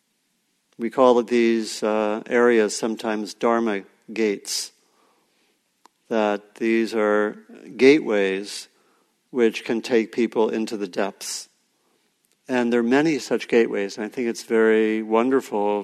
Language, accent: English, American